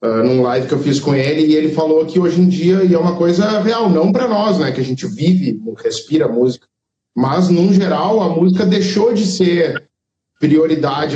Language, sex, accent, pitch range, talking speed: Portuguese, male, Brazilian, 135-185 Hz, 210 wpm